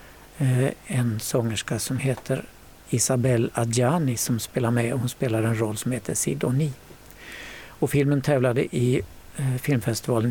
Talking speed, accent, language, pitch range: 115 wpm, native, Swedish, 120-145 Hz